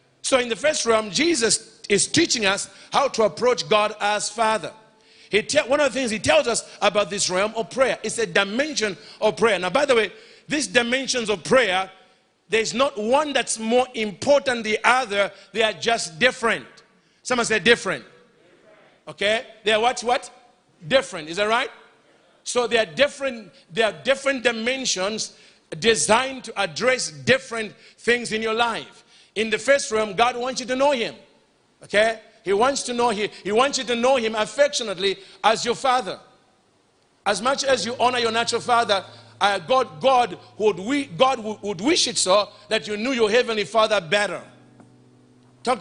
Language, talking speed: English, 180 wpm